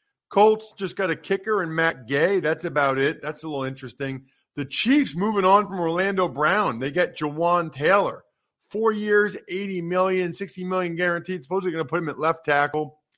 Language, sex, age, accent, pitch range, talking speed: English, male, 40-59, American, 135-185 Hz, 185 wpm